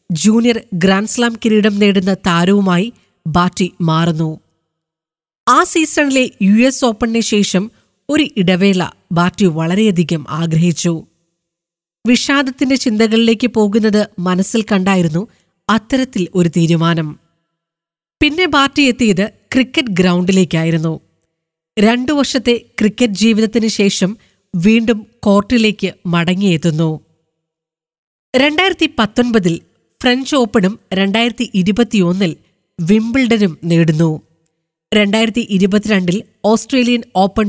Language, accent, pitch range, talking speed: Malayalam, native, 170-230 Hz, 80 wpm